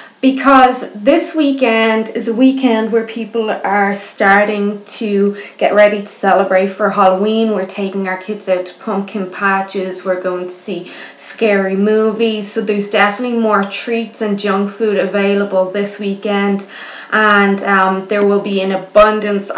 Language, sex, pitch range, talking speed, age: English, female, 200-230 Hz, 150 wpm, 20-39